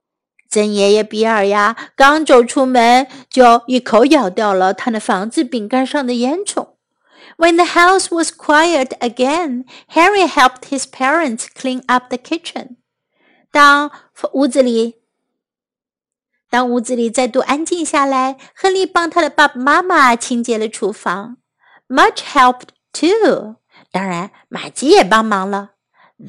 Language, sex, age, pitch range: Chinese, female, 50-69, 235-300 Hz